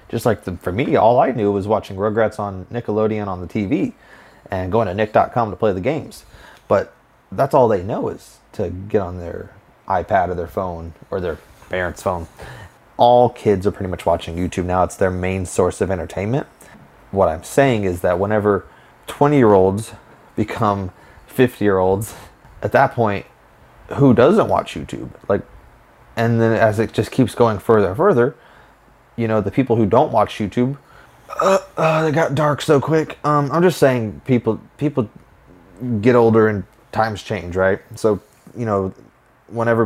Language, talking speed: English, 180 wpm